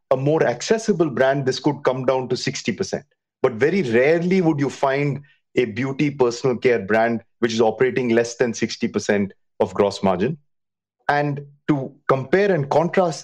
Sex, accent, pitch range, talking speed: male, Indian, 120-155 Hz, 170 wpm